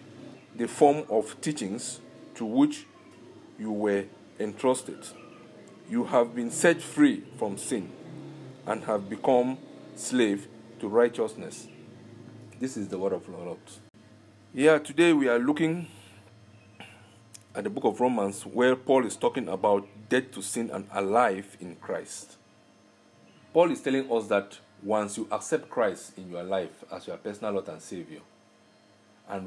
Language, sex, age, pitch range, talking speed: English, male, 50-69, 100-130 Hz, 145 wpm